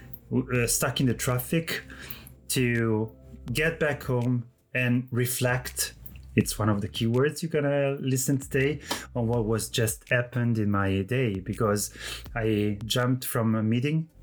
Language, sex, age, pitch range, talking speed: Italian, male, 30-49, 100-125 Hz, 150 wpm